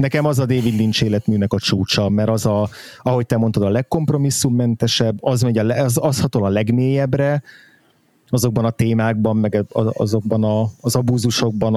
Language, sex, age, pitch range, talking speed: Hungarian, male, 30-49, 110-130 Hz, 160 wpm